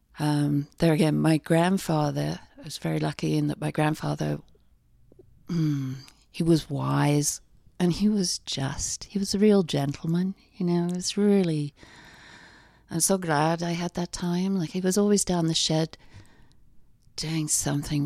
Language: English